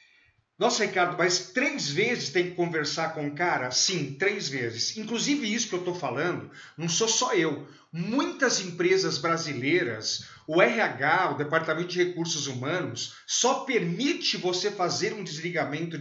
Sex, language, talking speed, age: male, Portuguese, 150 wpm, 50-69